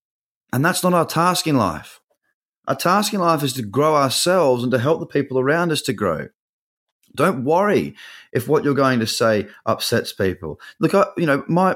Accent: Australian